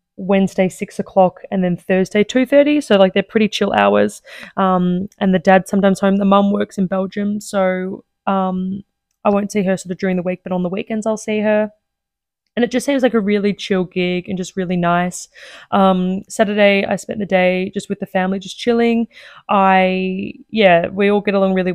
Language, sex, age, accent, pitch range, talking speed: English, female, 20-39, Australian, 185-210 Hz, 205 wpm